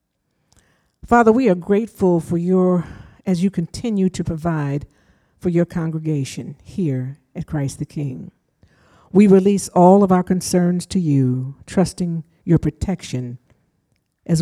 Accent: American